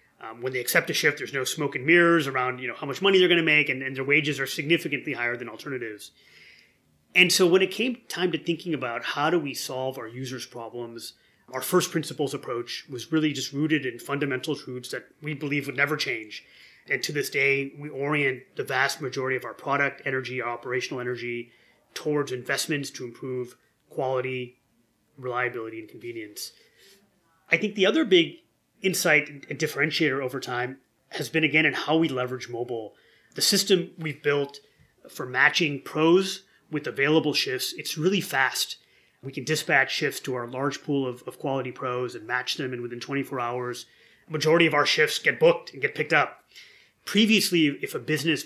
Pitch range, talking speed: 125-165 Hz, 185 wpm